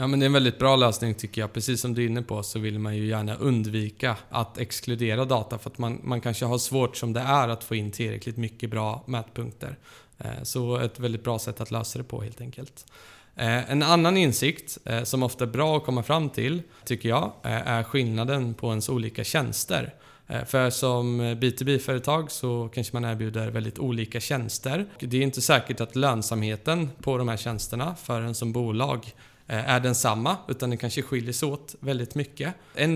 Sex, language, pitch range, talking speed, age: male, Swedish, 115-130 Hz, 195 wpm, 20-39